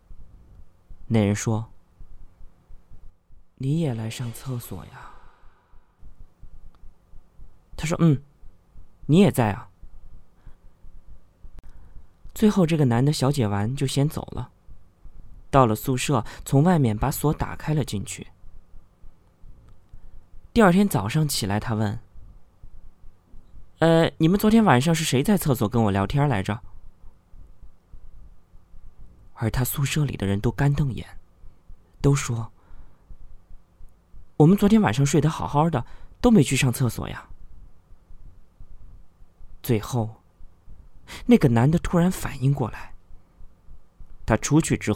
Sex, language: male, Chinese